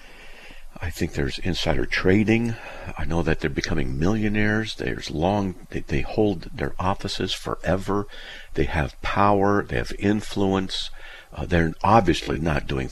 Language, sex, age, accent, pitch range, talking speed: English, male, 50-69, American, 70-100 Hz, 140 wpm